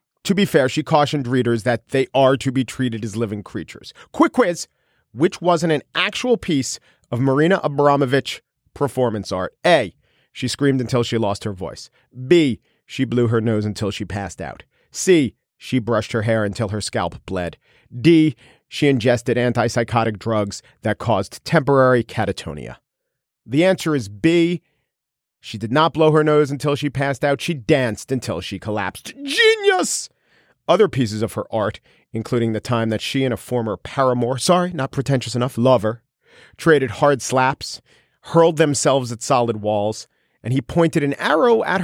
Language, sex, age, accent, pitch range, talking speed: English, male, 40-59, American, 115-150 Hz, 165 wpm